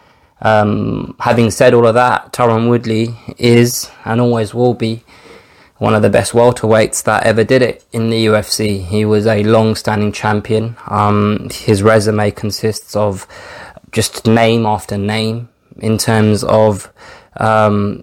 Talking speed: 145 wpm